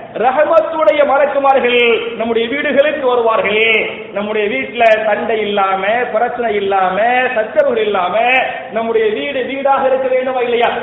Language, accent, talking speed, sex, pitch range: English, Indian, 90 wpm, male, 230-290 Hz